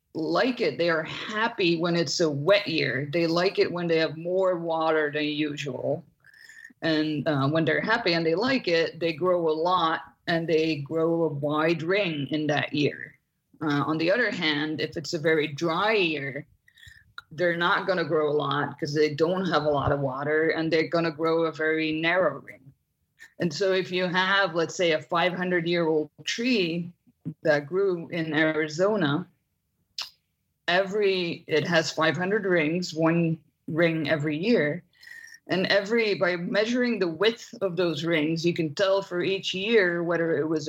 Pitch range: 155-180 Hz